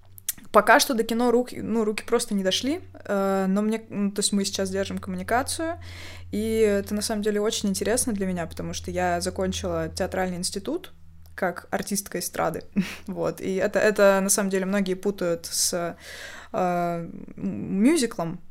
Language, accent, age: Russian, native, 20-39